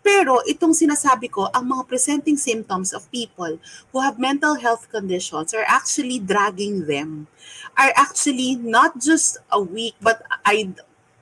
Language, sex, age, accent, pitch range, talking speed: English, female, 30-49, Filipino, 195-300 Hz, 145 wpm